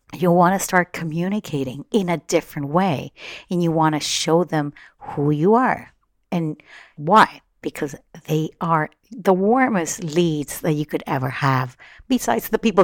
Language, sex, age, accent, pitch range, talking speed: English, female, 50-69, American, 150-205 Hz, 160 wpm